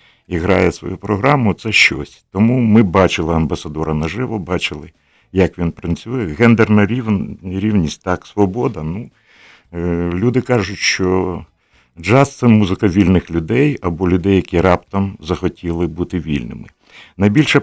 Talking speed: 125 wpm